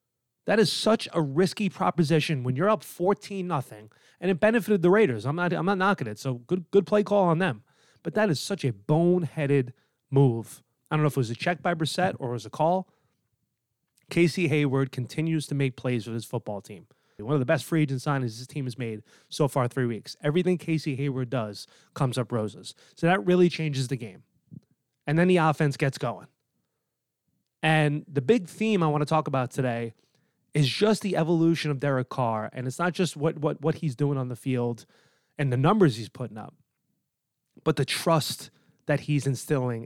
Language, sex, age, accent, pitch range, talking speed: English, male, 30-49, American, 130-170 Hz, 205 wpm